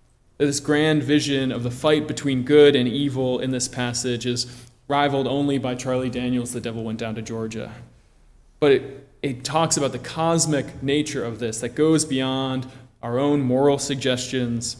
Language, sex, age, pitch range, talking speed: English, male, 20-39, 120-140 Hz, 170 wpm